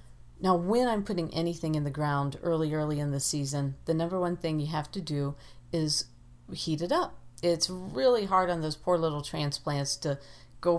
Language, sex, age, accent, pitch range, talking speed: English, female, 40-59, American, 145-180 Hz, 195 wpm